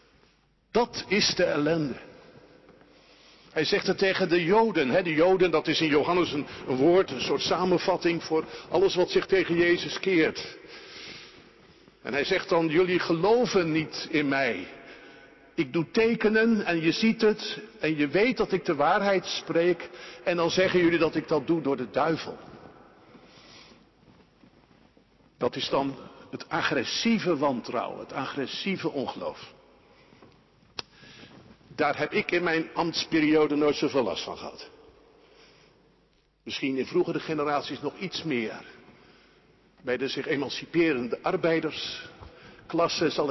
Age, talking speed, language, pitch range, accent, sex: 60-79, 135 wpm, Dutch, 145-190 Hz, Dutch, male